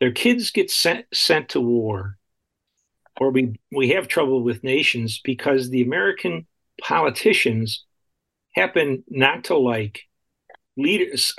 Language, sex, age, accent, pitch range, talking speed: English, male, 50-69, American, 110-185 Hz, 120 wpm